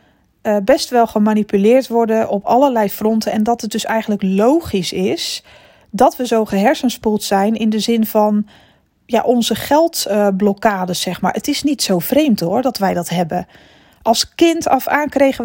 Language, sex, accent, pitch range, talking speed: Dutch, female, Dutch, 205-260 Hz, 170 wpm